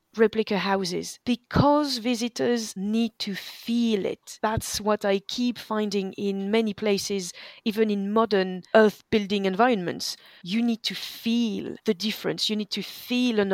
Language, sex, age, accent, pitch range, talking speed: English, female, 30-49, French, 195-240 Hz, 145 wpm